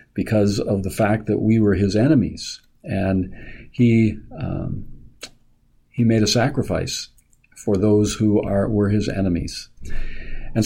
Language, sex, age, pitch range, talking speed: English, male, 50-69, 100-125 Hz, 135 wpm